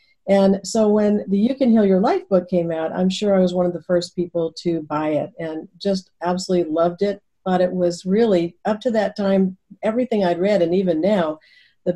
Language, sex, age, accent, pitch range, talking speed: English, female, 50-69, American, 175-215 Hz, 220 wpm